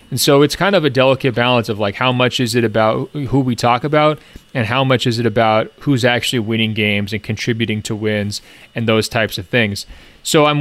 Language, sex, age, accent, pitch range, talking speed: English, male, 30-49, American, 115-135 Hz, 220 wpm